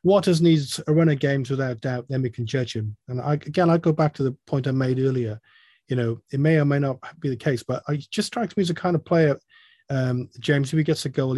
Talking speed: 275 wpm